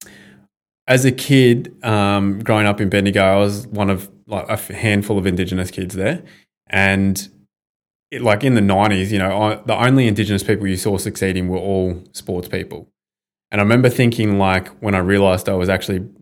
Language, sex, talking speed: English, male, 180 wpm